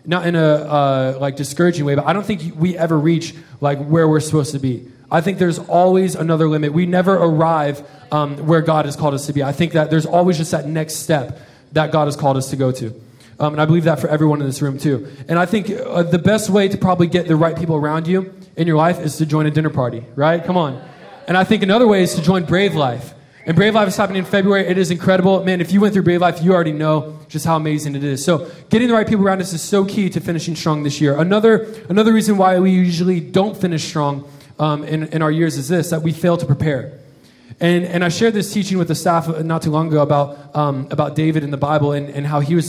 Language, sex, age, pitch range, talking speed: English, male, 20-39, 145-180 Hz, 265 wpm